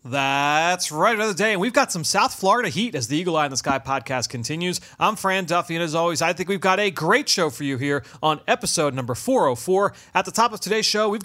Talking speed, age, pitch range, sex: 250 wpm, 30-49, 145-185 Hz, male